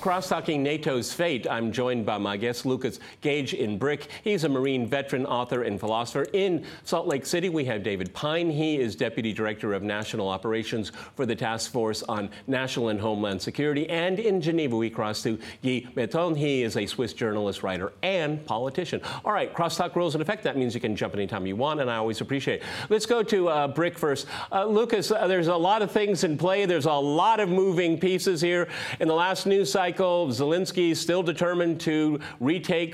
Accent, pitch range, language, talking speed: American, 120-170 Hz, English, 205 wpm